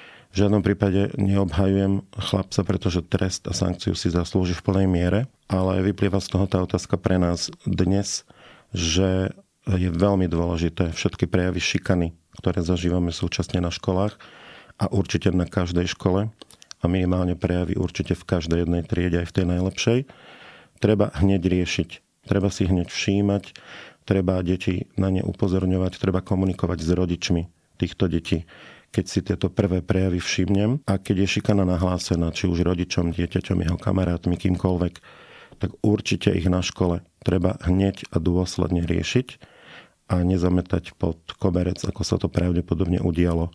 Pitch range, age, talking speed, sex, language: 90-100 Hz, 40-59, 145 wpm, male, Slovak